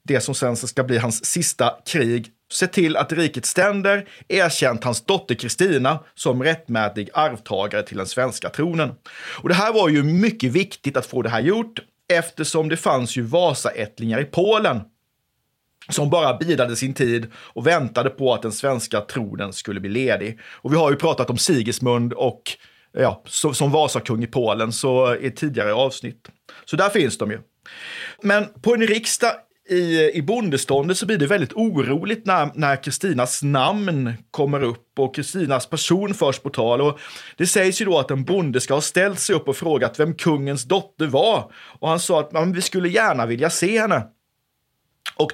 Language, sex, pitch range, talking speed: Swedish, male, 125-185 Hz, 175 wpm